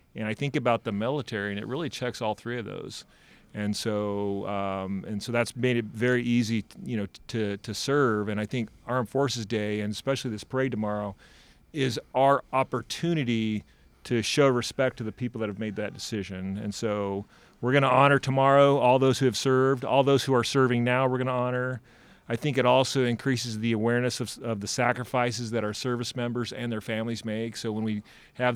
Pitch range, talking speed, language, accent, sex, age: 110-125 Hz, 210 wpm, English, American, male, 40-59